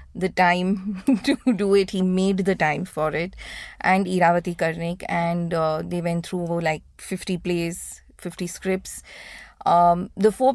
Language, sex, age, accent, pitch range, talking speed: English, female, 20-39, Indian, 170-195 Hz, 155 wpm